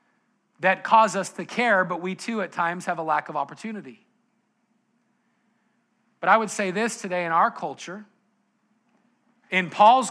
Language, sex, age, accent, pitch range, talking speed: English, male, 40-59, American, 180-225 Hz, 155 wpm